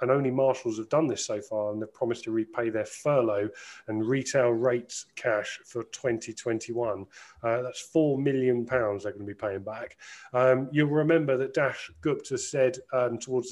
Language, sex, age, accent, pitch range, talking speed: English, male, 30-49, British, 115-135 Hz, 180 wpm